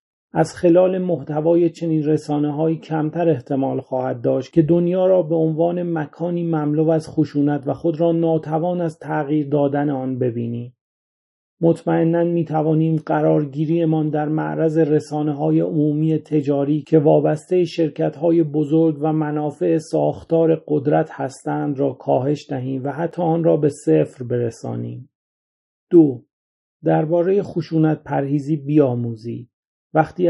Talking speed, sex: 125 wpm, male